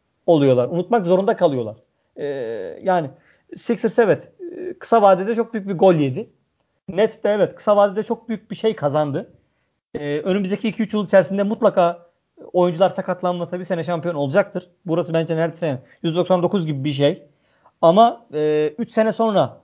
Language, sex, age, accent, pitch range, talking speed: Turkish, male, 40-59, native, 170-220 Hz, 155 wpm